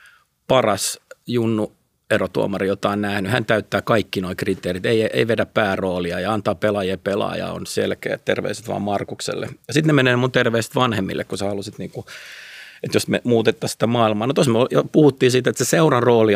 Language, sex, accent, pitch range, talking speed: Finnish, male, native, 100-130 Hz, 185 wpm